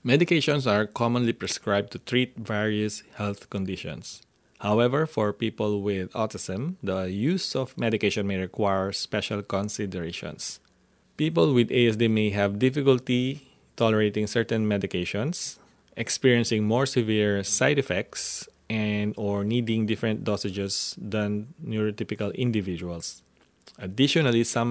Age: 20-39